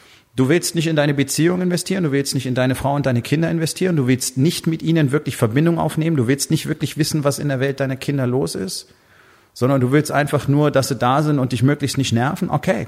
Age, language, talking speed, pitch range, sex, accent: 30-49, German, 245 wpm, 115-150 Hz, male, German